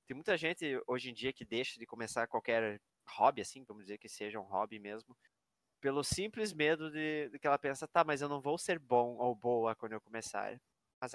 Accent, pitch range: Brazilian, 115-145 Hz